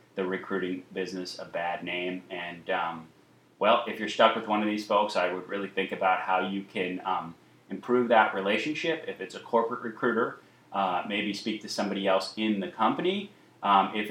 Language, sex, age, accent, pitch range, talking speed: English, male, 30-49, American, 90-110 Hz, 190 wpm